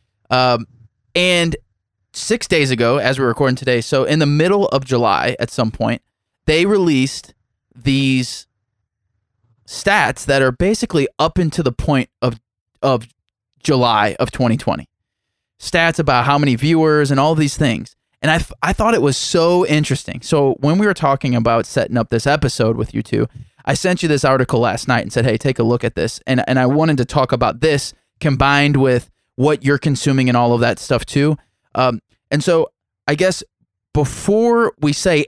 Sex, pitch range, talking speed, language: male, 120-160 Hz, 185 wpm, English